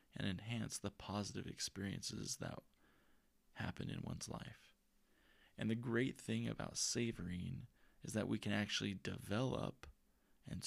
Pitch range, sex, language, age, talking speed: 95-110 Hz, male, English, 20-39, 130 wpm